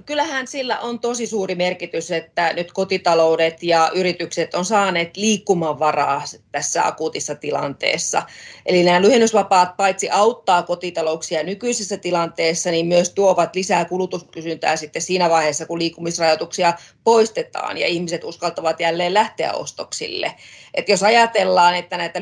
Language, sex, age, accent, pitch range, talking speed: Finnish, female, 30-49, native, 165-200 Hz, 125 wpm